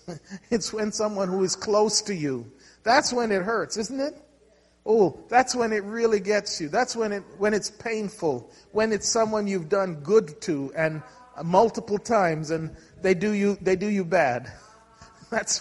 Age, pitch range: 40-59, 170-220 Hz